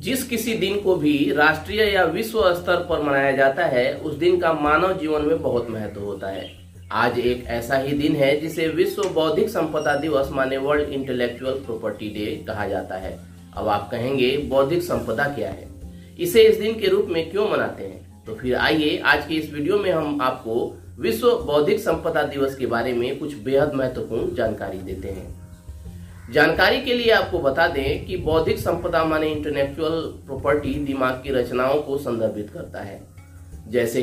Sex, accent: male, native